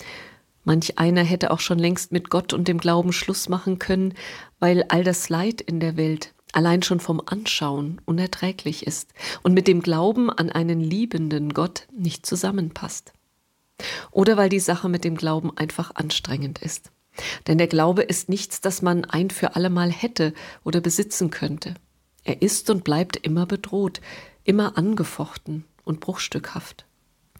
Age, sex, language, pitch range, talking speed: 40-59, female, German, 160-195 Hz, 155 wpm